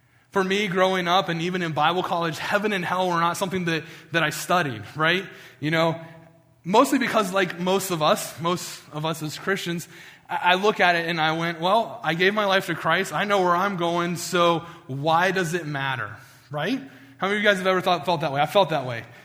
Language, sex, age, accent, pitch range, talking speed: English, male, 20-39, American, 145-180 Hz, 230 wpm